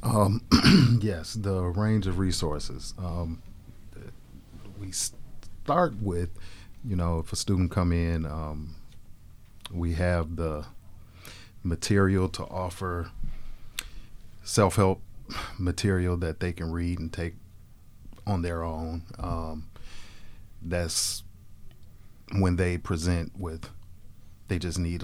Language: English